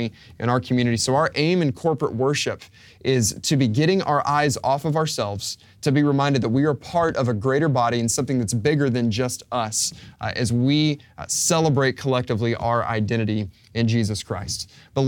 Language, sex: English, male